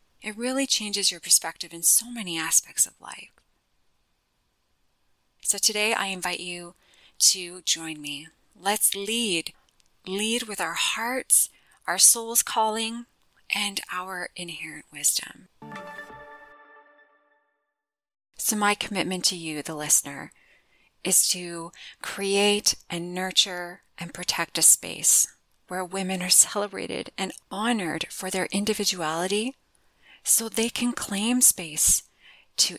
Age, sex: 30-49, female